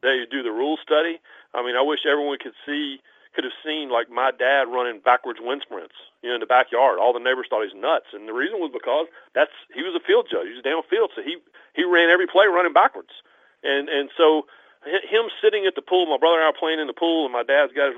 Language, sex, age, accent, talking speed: English, male, 40-59, American, 255 wpm